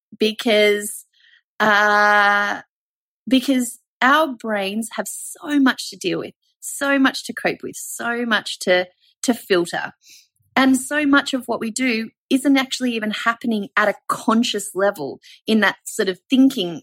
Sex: female